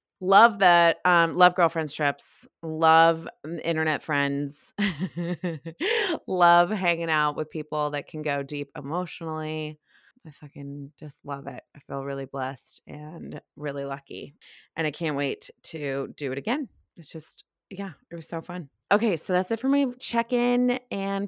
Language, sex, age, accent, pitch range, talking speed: English, female, 20-39, American, 155-205 Hz, 150 wpm